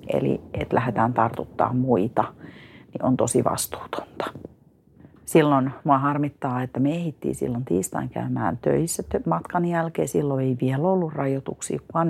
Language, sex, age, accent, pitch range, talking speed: Finnish, female, 40-59, native, 130-155 Hz, 135 wpm